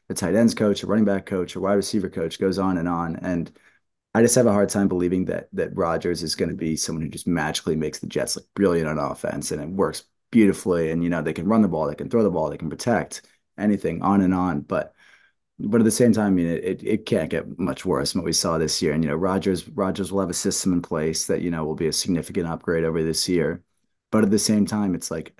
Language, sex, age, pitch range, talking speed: English, male, 20-39, 85-100 Hz, 275 wpm